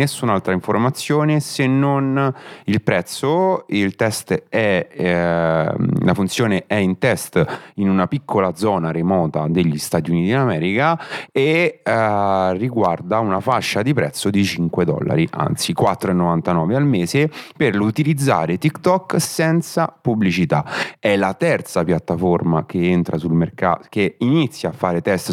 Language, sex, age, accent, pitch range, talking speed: Italian, male, 30-49, native, 85-105 Hz, 135 wpm